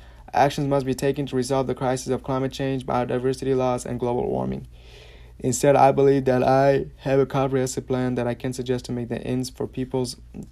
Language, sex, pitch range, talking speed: English, male, 120-130 Hz, 200 wpm